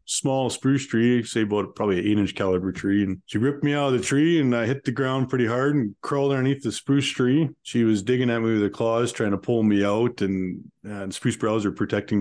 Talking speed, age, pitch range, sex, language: 250 wpm, 20-39, 105-130 Hz, male, English